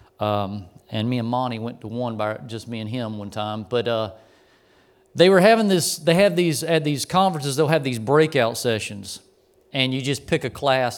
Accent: American